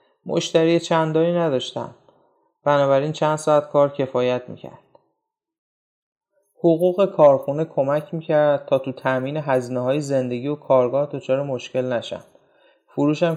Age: 30-49